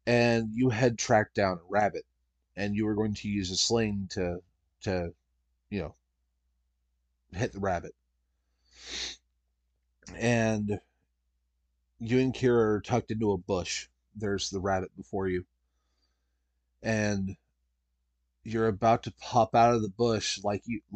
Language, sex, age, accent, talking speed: English, male, 30-49, American, 135 wpm